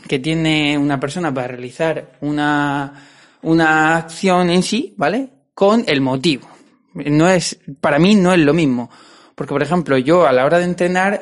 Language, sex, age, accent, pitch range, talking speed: Spanish, male, 20-39, Spanish, 140-180 Hz, 170 wpm